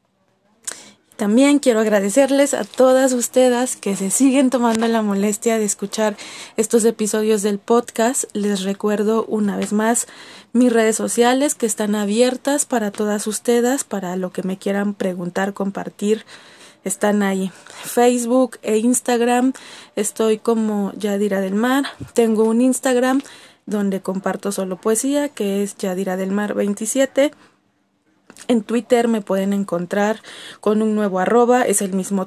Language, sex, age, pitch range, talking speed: Spanish, female, 20-39, 200-240 Hz, 135 wpm